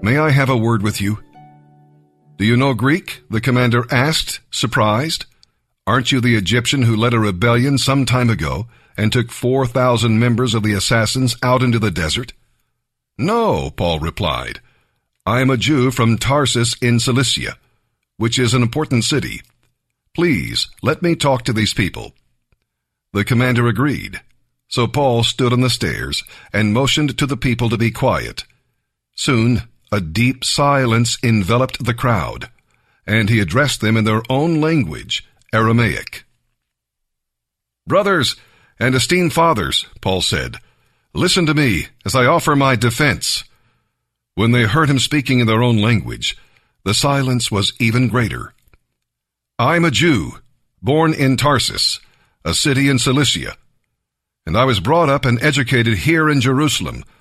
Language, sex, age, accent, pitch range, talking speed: English, male, 50-69, American, 110-135 Hz, 150 wpm